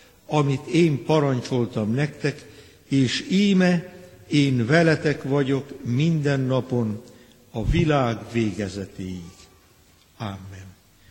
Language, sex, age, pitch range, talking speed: Hungarian, male, 60-79, 135-170 Hz, 80 wpm